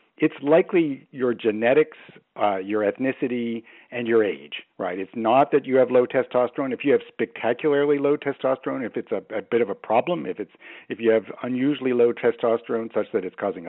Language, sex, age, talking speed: English, male, 60-79, 195 wpm